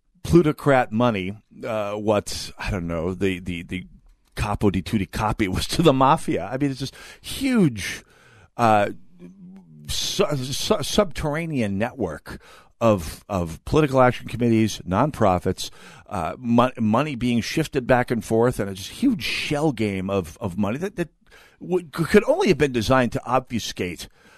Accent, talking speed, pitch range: American, 150 wpm, 100-145 Hz